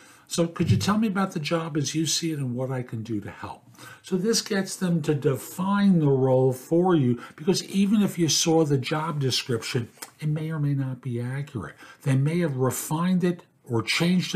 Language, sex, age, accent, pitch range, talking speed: English, male, 50-69, American, 135-180 Hz, 215 wpm